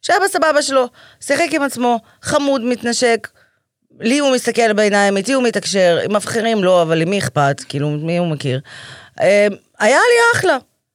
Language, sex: Hebrew, female